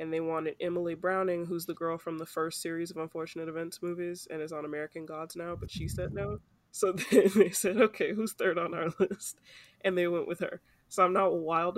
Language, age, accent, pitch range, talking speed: English, 20-39, American, 160-185 Hz, 230 wpm